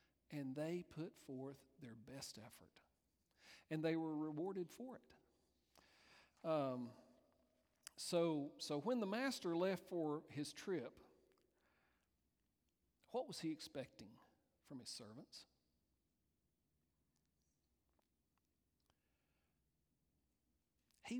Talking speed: 90 wpm